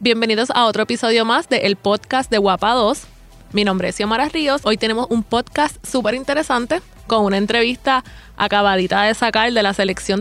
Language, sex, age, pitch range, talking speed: Spanish, female, 20-39, 200-245 Hz, 180 wpm